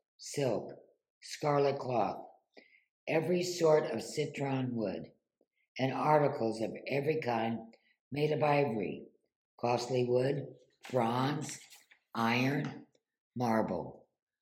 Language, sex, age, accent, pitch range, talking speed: English, female, 60-79, American, 110-140 Hz, 85 wpm